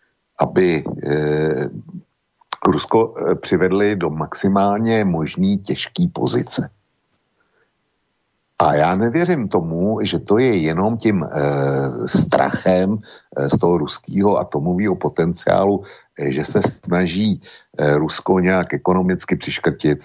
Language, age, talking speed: Slovak, 60-79, 110 wpm